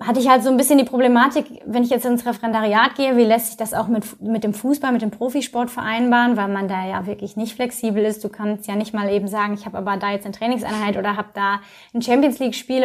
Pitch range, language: 210-245 Hz, German